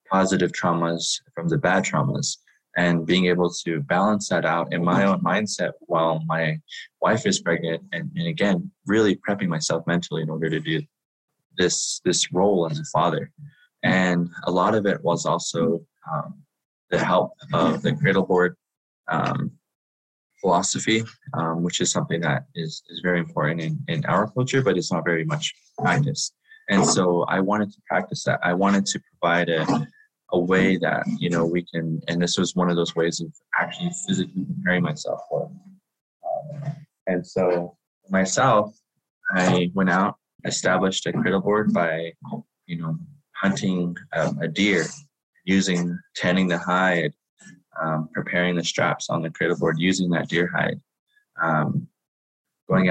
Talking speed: 160 wpm